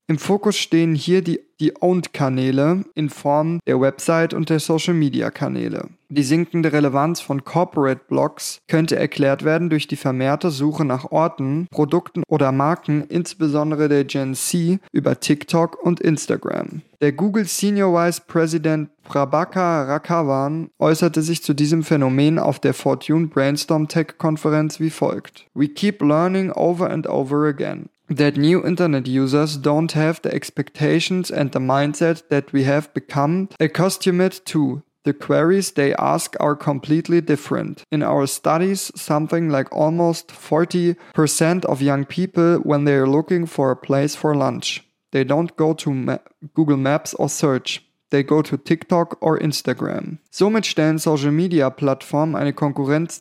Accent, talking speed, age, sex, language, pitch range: German, 150 wpm, 20-39, male, German, 145-170 Hz